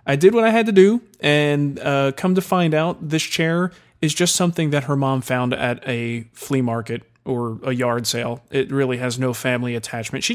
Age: 30-49